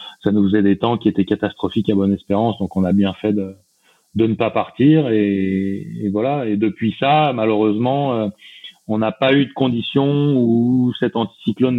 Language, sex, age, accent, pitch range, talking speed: French, male, 30-49, French, 100-120 Hz, 190 wpm